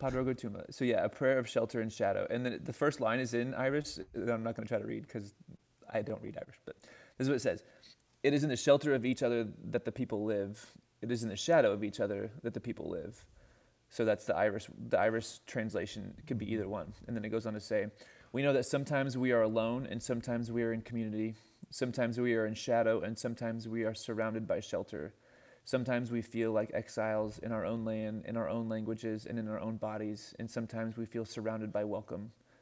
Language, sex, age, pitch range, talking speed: English, male, 20-39, 110-120 Hz, 230 wpm